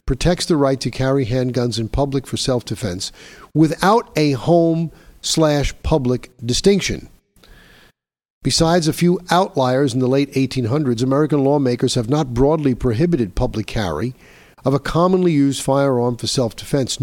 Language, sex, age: English, male, 50-69